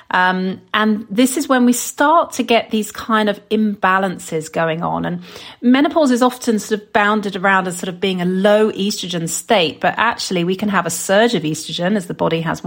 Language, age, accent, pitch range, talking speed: English, 40-59, British, 180-230 Hz, 210 wpm